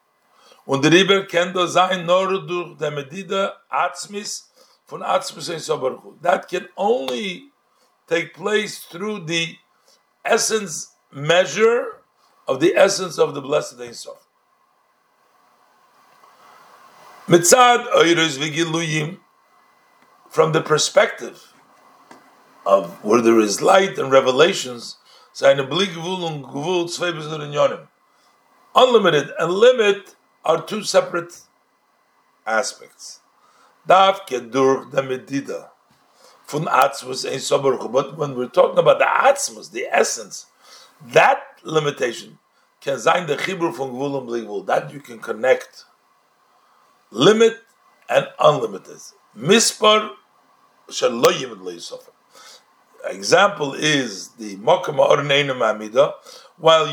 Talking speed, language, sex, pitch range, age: 70 wpm, English, male, 145-215 Hz, 50-69